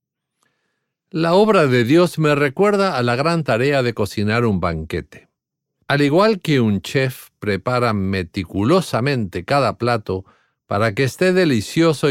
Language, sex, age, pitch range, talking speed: English, male, 50-69, 105-145 Hz, 135 wpm